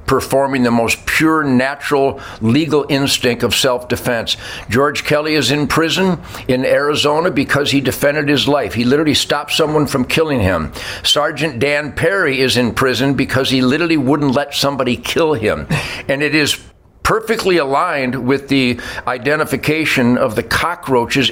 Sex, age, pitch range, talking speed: male, 60-79, 130-170 Hz, 150 wpm